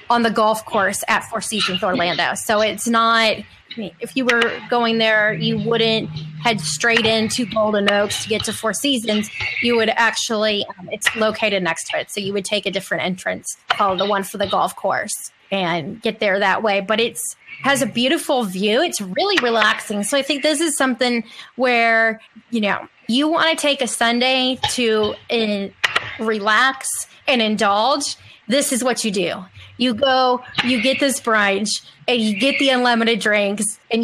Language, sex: English, female